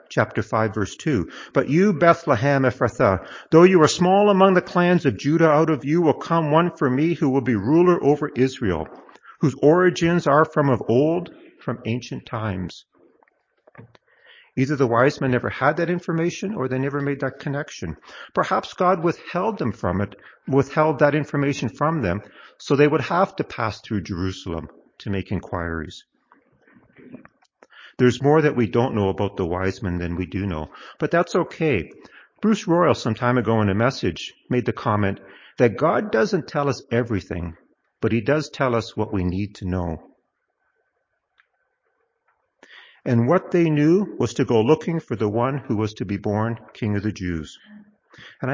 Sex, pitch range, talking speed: male, 105-155 Hz, 175 wpm